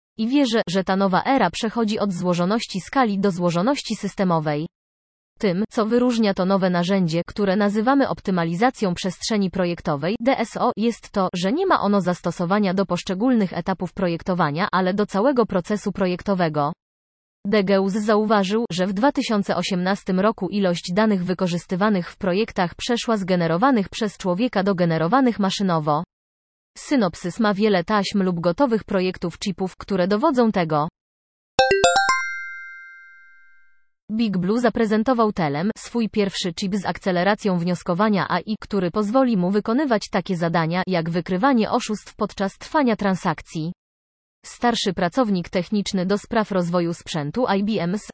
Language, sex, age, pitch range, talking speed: Polish, female, 20-39, 180-220 Hz, 125 wpm